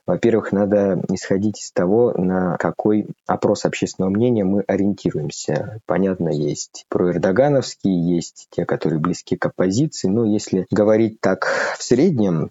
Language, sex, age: Russian, male, 20-39